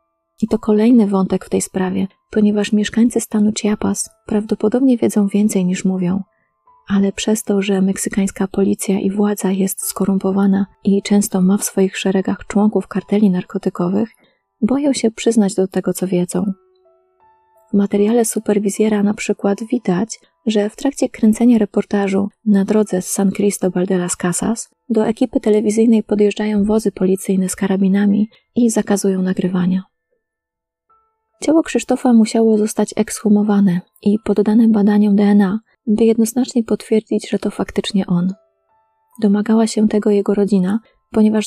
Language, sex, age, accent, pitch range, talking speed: Polish, female, 30-49, native, 195-220 Hz, 135 wpm